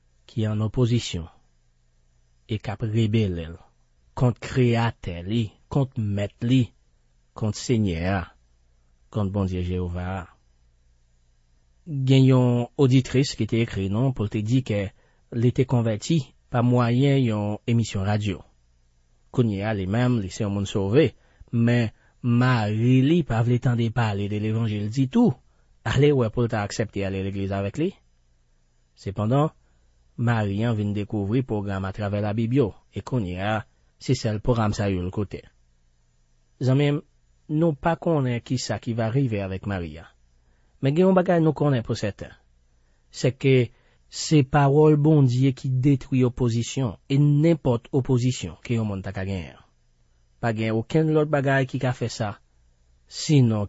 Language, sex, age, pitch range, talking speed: French, male, 40-59, 85-125 Hz, 140 wpm